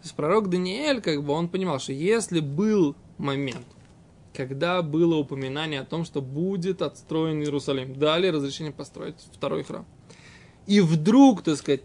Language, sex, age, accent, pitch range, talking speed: Russian, male, 20-39, native, 150-215 Hz, 150 wpm